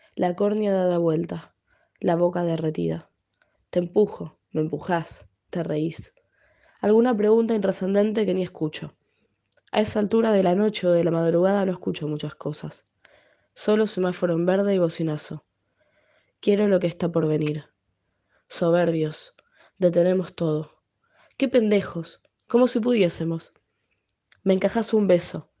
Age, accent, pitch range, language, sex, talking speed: 20-39, Argentinian, 165-195 Hz, Spanish, female, 135 wpm